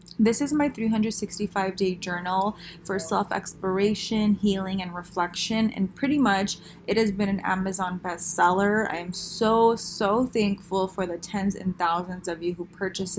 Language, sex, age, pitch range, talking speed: English, female, 20-39, 180-215 Hz, 150 wpm